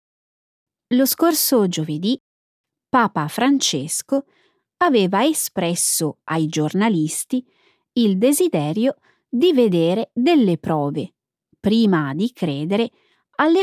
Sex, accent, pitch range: female, native, 170-265 Hz